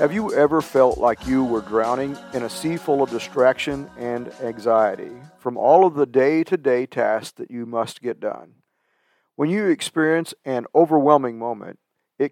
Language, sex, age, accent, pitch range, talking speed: English, male, 50-69, American, 125-150 Hz, 165 wpm